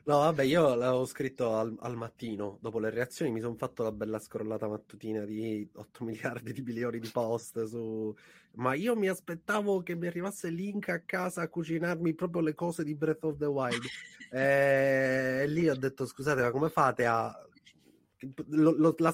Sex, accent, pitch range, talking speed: male, native, 120-155 Hz, 180 wpm